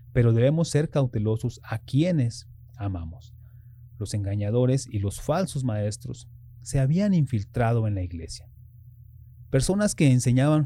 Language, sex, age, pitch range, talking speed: English, male, 30-49, 115-140 Hz, 125 wpm